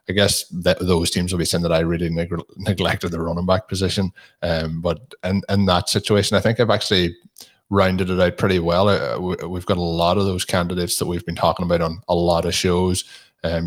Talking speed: 230 wpm